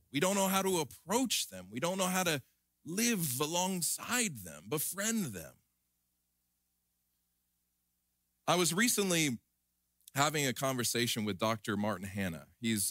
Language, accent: English, American